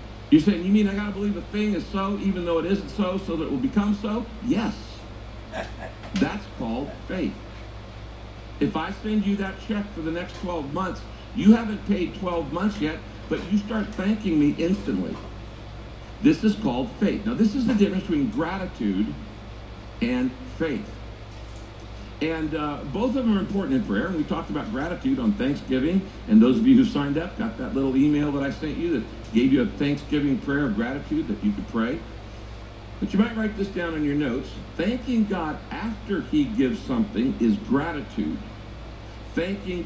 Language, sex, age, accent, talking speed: English, male, 60-79, American, 185 wpm